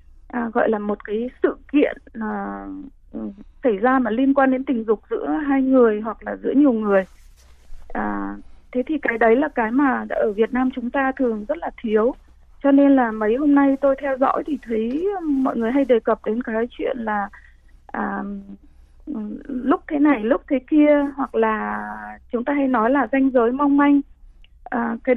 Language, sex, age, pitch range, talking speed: Vietnamese, female, 20-39, 225-280 Hz, 180 wpm